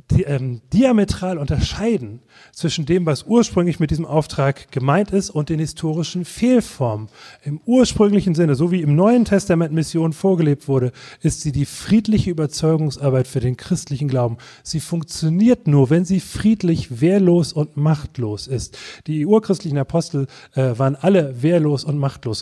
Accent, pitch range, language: German, 130-170 Hz, German